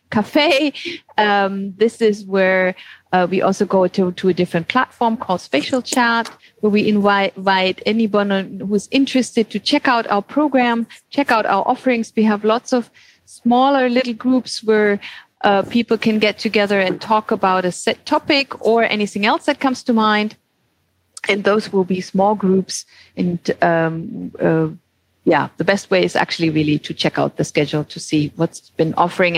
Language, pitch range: English, 180-240 Hz